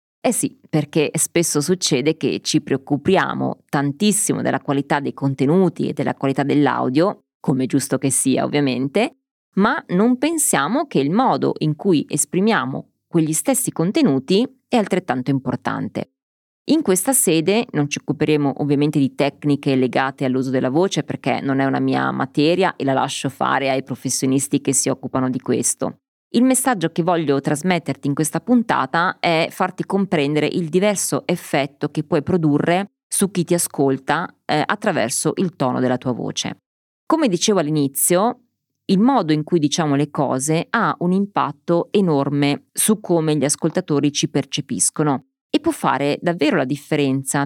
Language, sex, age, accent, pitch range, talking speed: Italian, female, 20-39, native, 140-185 Hz, 155 wpm